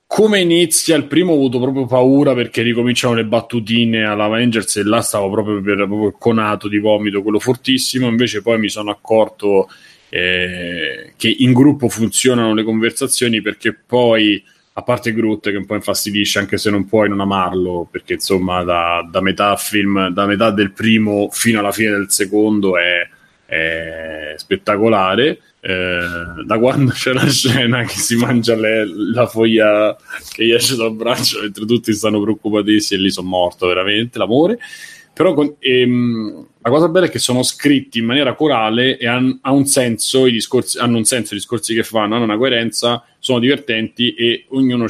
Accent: native